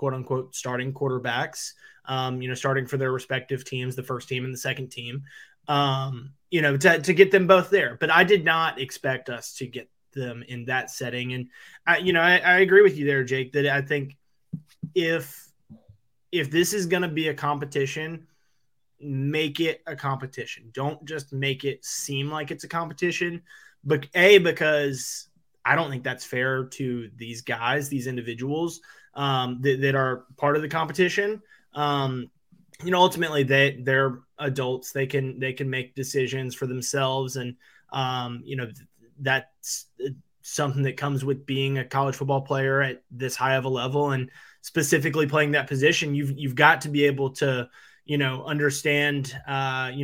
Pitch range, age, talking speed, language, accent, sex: 130-150 Hz, 20-39, 175 wpm, English, American, male